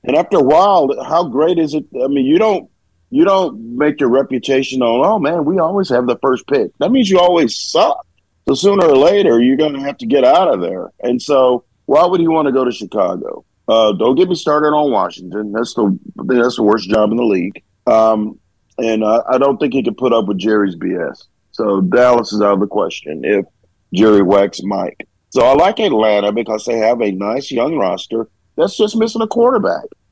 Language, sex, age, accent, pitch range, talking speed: English, male, 40-59, American, 115-170 Hz, 220 wpm